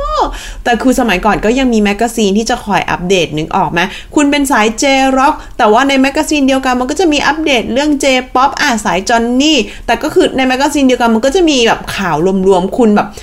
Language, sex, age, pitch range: Thai, female, 20-39, 215-280 Hz